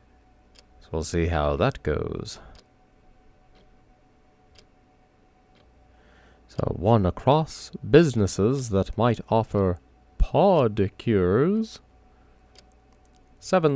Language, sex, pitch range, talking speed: English, male, 80-125 Hz, 70 wpm